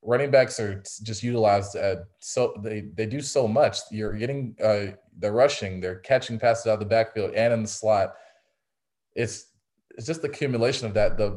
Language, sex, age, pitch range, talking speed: English, male, 20-39, 95-115 Hz, 190 wpm